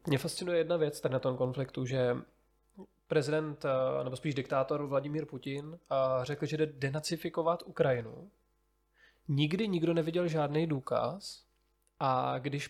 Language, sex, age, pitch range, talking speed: Czech, male, 20-39, 140-170 Hz, 130 wpm